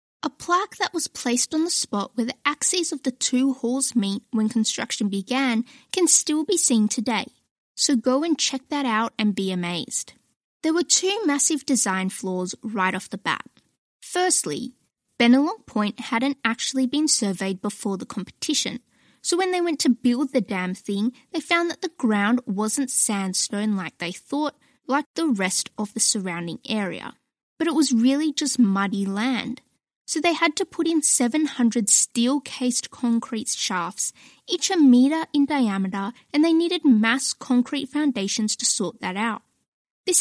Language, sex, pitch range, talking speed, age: English, female, 220-305 Hz, 170 wpm, 10-29